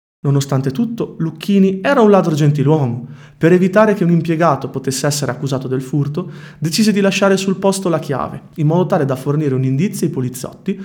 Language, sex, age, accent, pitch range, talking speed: Italian, male, 30-49, native, 145-195 Hz, 185 wpm